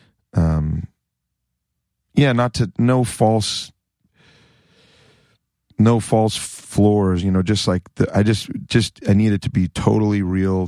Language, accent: English, American